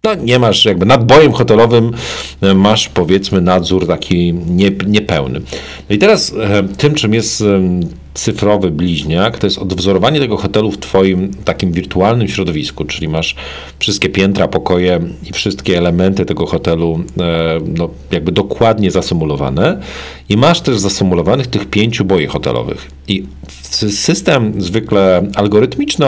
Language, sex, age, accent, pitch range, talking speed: Polish, male, 50-69, native, 80-105 Hz, 125 wpm